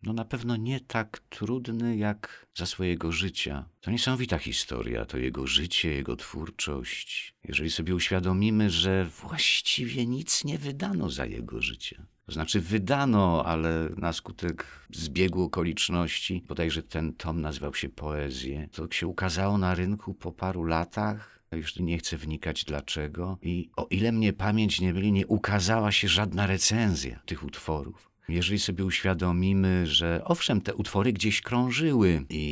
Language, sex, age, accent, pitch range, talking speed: Polish, male, 50-69, native, 75-100 Hz, 150 wpm